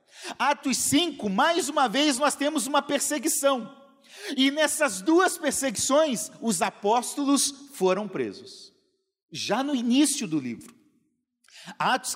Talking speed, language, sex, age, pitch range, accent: 115 wpm, Portuguese, male, 50-69, 210-285 Hz, Brazilian